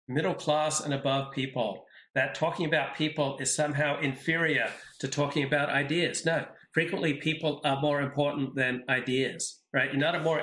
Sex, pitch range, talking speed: male, 135-155 Hz, 165 wpm